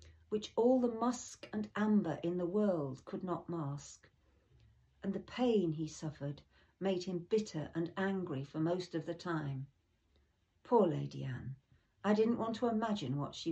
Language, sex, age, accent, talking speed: English, female, 50-69, British, 165 wpm